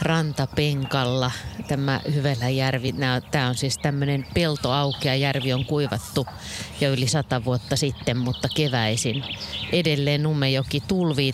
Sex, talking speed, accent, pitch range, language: female, 110 wpm, native, 130-175 Hz, Finnish